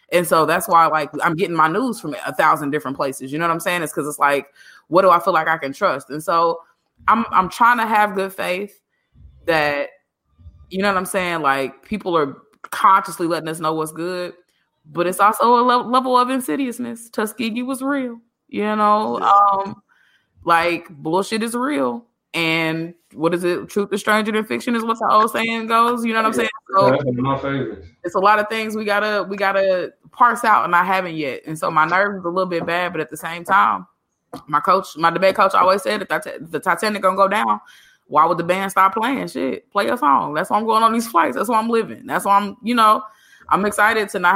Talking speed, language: 225 wpm, English